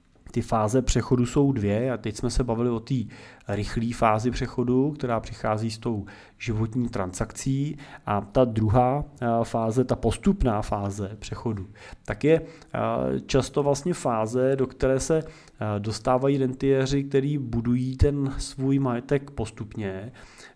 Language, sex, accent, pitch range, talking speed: Czech, male, native, 105-130 Hz, 130 wpm